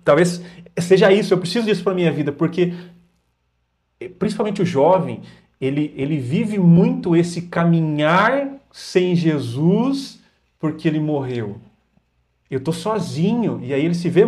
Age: 40-59